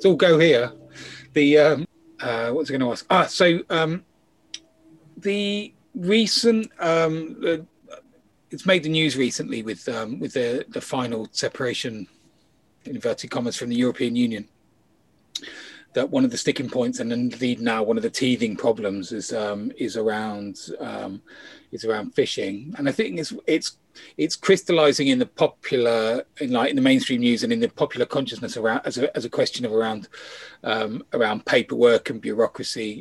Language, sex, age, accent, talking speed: English, male, 30-49, British, 175 wpm